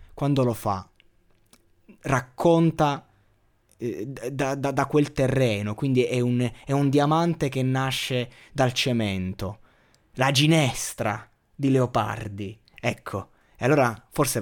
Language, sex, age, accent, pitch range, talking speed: Italian, male, 20-39, native, 110-130 Hz, 110 wpm